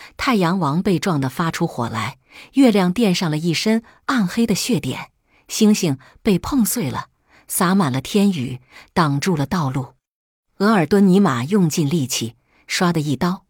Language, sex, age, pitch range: Chinese, female, 50-69, 145-210 Hz